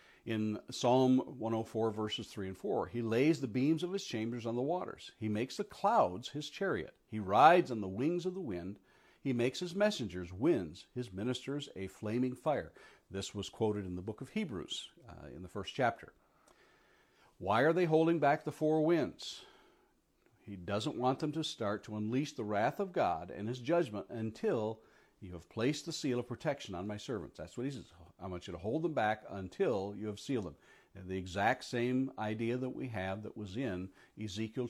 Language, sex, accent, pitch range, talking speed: English, male, American, 105-155 Hz, 200 wpm